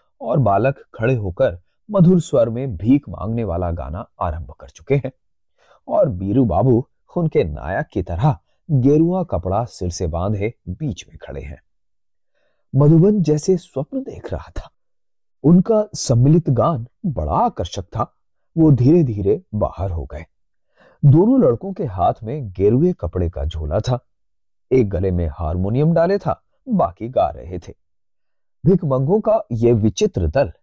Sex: male